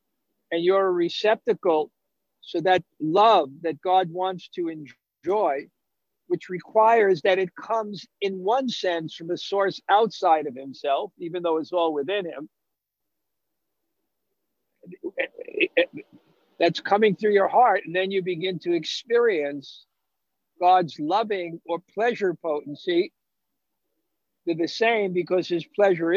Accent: American